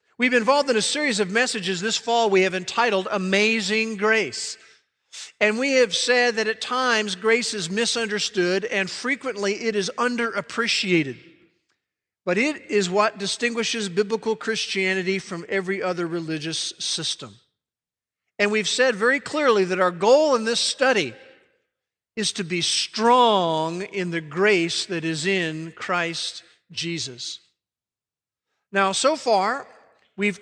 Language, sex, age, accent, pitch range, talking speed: English, male, 50-69, American, 185-230 Hz, 135 wpm